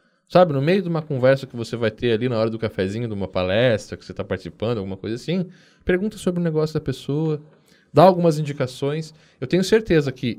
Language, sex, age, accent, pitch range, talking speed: Portuguese, male, 10-29, Brazilian, 105-150 Hz, 220 wpm